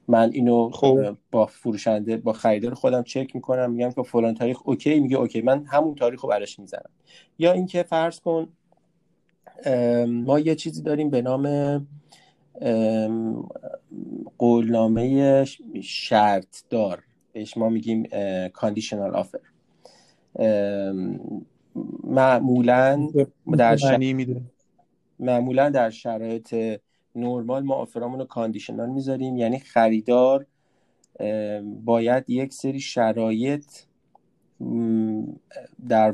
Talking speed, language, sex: 95 wpm, Persian, male